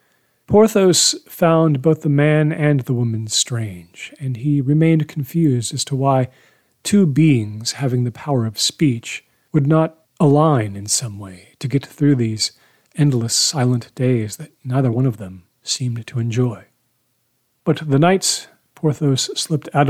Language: English